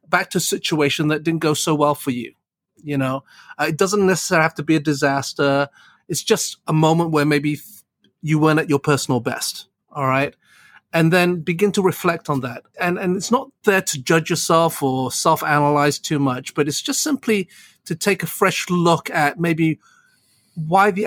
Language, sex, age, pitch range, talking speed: English, male, 40-59, 145-195 Hz, 195 wpm